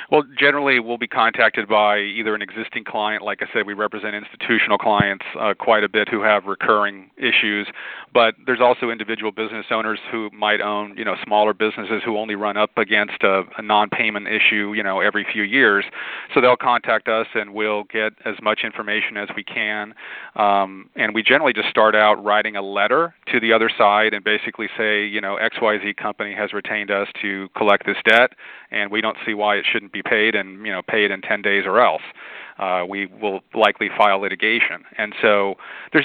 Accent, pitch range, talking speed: American, 105-110 Hz, 200 wpm